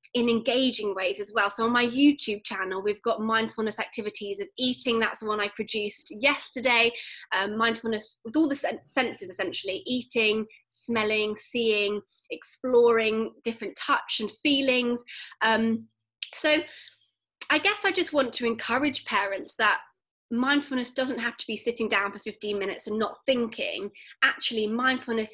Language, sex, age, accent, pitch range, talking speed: English, female, 20-39, British, 220-280 Hz, 150 wpm